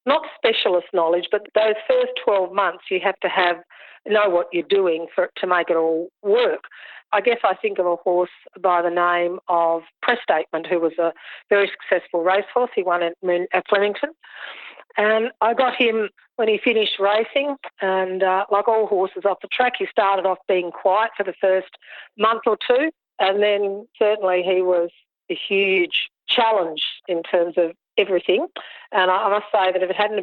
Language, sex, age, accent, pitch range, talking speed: English, female, 40-59, Australian, 175-215 Hz, 185 wpm